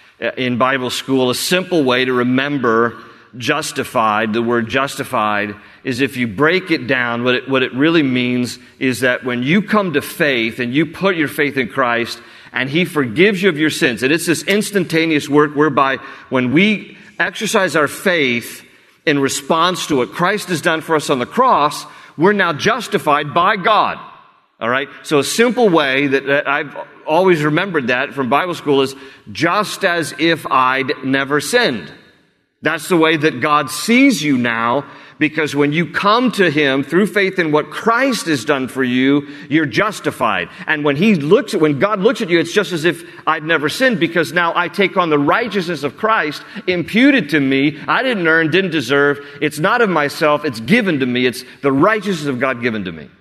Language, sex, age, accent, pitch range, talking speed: English, male, 40-59, American, 135-180 Hz, 190 wpm